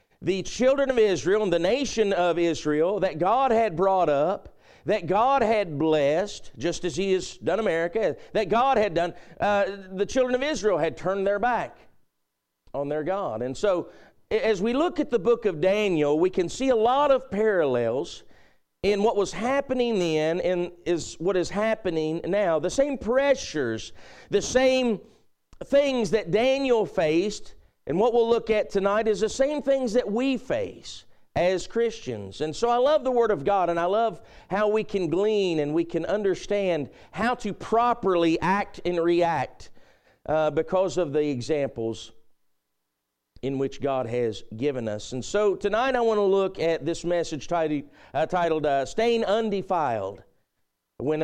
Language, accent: English, American